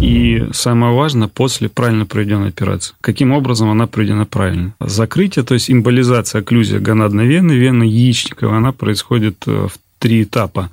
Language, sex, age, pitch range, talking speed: Russian, male, 30-49, 110-125 Hz, 145 wpm